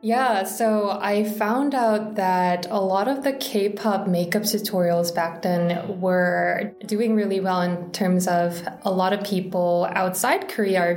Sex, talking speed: female, 160 wpm